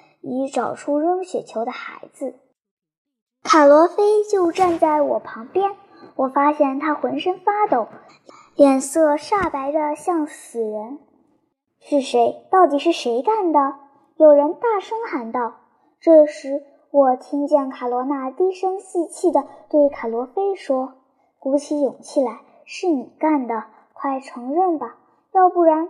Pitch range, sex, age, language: 270-350 Hz, male, 10-29, Chinese